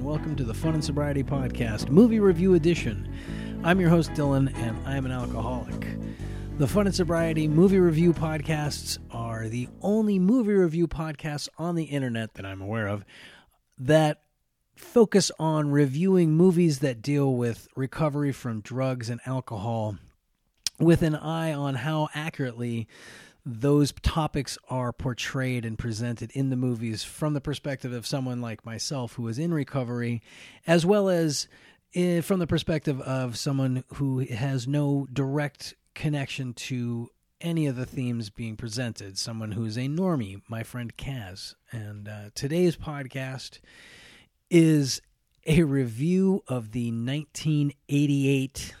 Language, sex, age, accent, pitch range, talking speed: English, male, 40-59, American, 120-155 Hz, 140 wpm